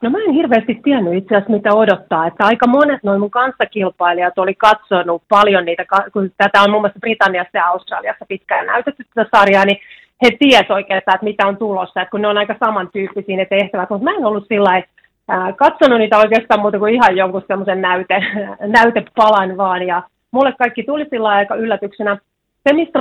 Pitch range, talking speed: 195-240 Hz, 190 wpm